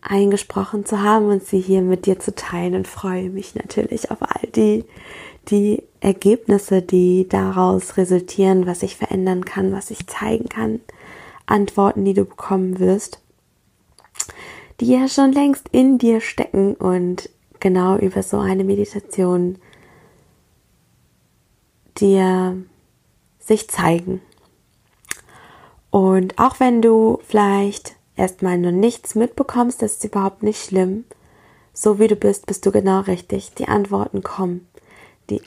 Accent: German